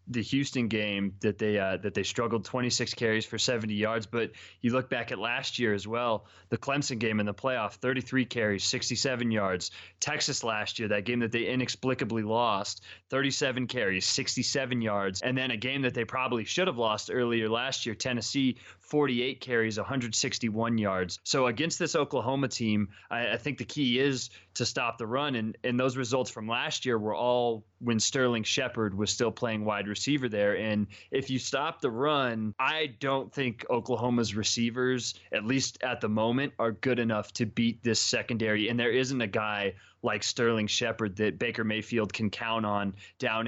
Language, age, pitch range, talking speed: English, 20-39, 110-130 Hz, 190 wpm